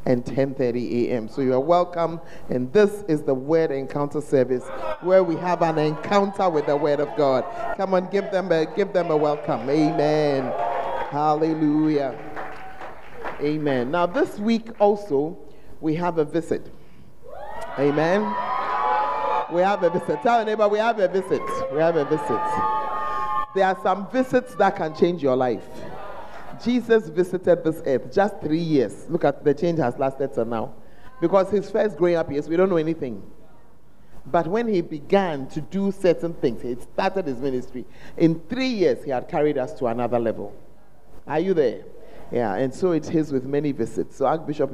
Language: English